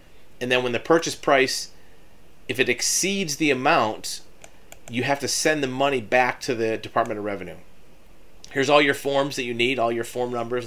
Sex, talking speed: male, 190 wpm